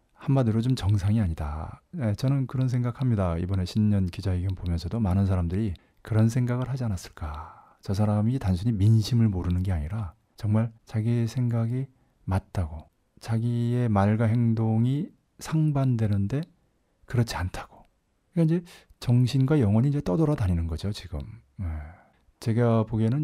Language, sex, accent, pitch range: Korean, male, native, 95-120 Hz